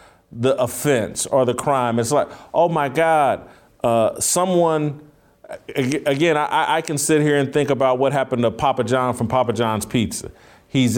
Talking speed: 170 wpm